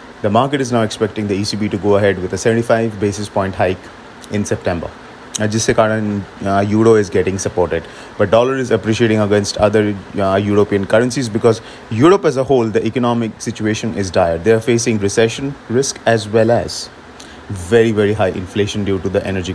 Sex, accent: male, Indian